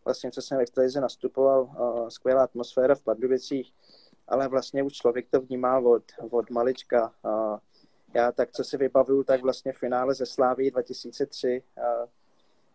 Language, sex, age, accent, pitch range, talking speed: Czech, male, 20-39, native, 120-135 Hz, 150 wpm